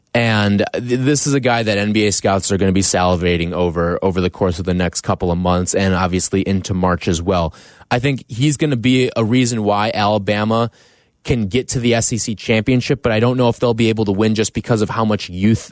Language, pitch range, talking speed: English, 100-135 Hz, 235 wpm